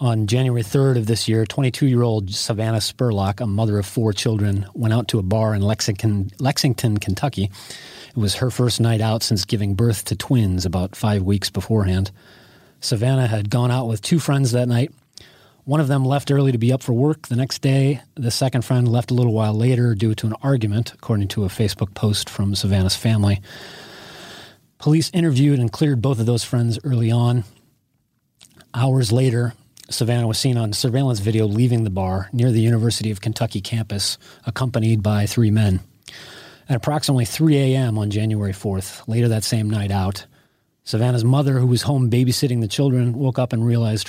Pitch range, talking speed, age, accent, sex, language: 110-130 Hz, 185 wpm, 30-49, American, male, English